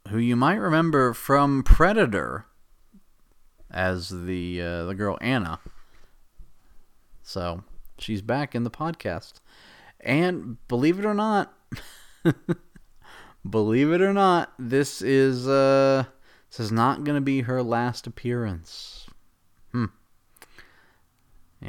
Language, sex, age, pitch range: English, male, 30-49, 100-135 Hz